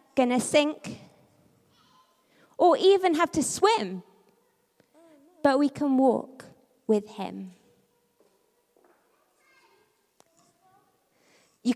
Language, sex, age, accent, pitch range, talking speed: English, female, 20-39, British, 220-300 Hz, 75 wpm